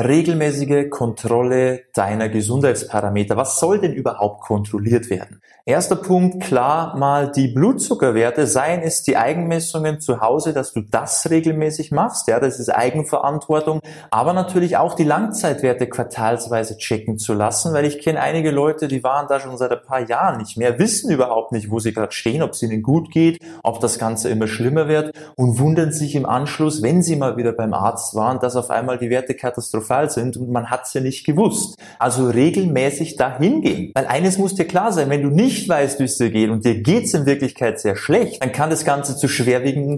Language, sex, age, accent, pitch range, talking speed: German, male, 20-39, German, 115-160 Hz, 195 wpm